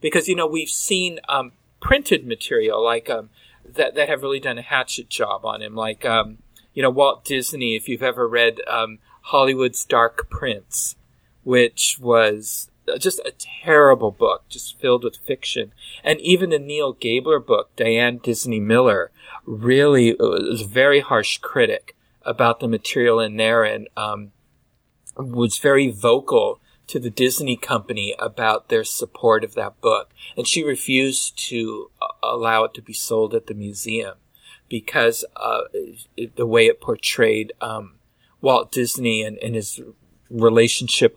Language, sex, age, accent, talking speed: English, male, 40-59, American, 155 wpm